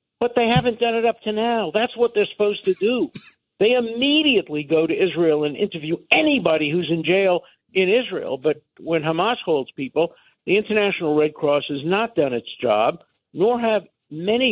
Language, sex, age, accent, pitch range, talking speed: English, male, 50-69, American, 155-230 Hz, 180 wpm